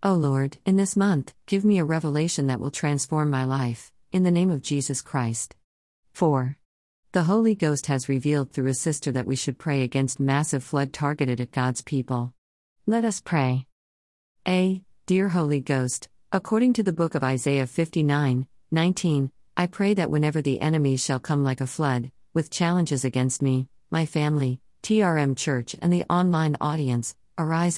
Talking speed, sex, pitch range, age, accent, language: 175 wpm, female, 135-165 Hz, 50-69, American, English